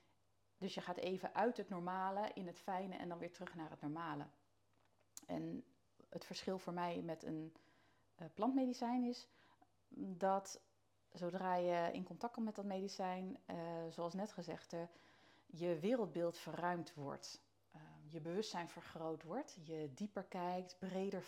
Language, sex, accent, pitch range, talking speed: Dutch, female, Dutch, 155-190 Hz, 145 wpm